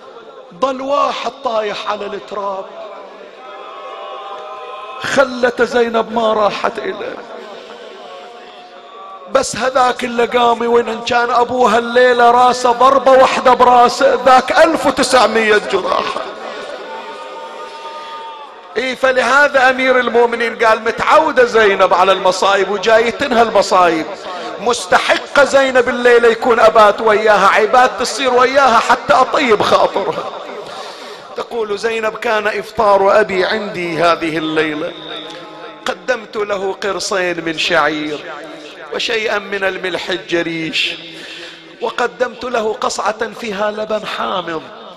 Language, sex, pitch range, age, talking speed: Arabic, male, 195-250 Hz, 40-59, 95 wpm